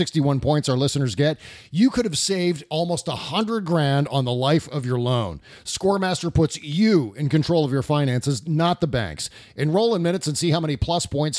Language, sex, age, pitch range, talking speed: English, male, 40-59, 140-180 Hz, 205 wpm